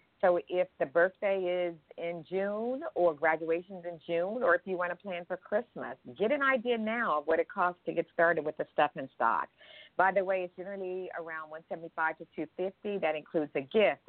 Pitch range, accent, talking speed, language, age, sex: 160-190 Hz, American, 210 wpm, English, 50-69, female